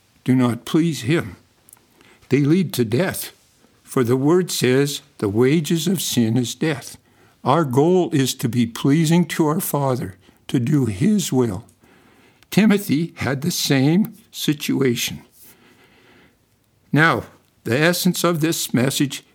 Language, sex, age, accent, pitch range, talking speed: English, male, 60-79, American, 120-160 Hz, 130 wpm